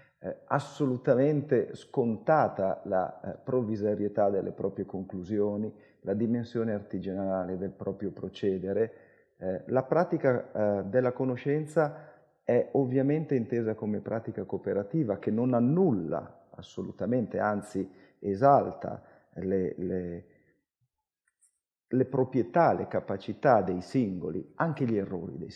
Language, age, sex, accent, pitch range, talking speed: Italian, 40-59, male, native, 100-130 Hz, 105 wpm